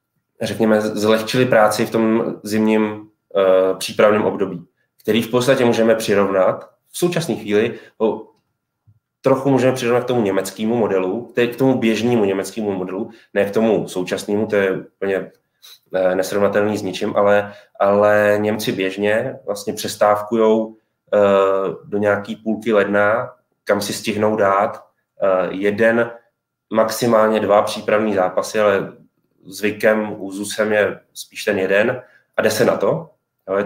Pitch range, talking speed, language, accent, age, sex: 100-115 Hz, 130 wpm, Czech, native, 20-39, male